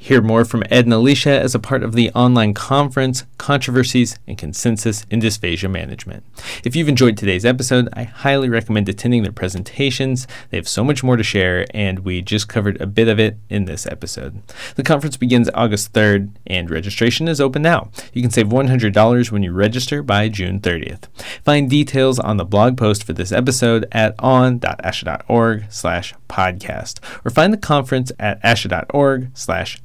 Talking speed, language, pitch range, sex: 175 wpm, English, 100-130 Hz, male